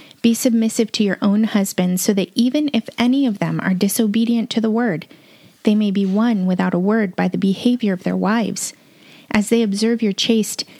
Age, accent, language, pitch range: 30-49, American, English, 195-240 Hz